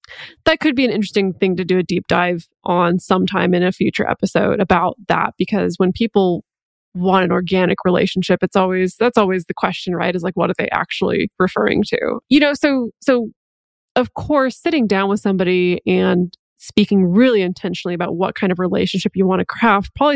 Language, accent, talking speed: English, American, 195 wpm